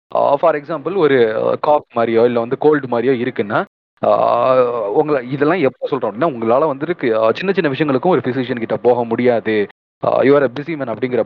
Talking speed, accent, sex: 155 wpm, native, male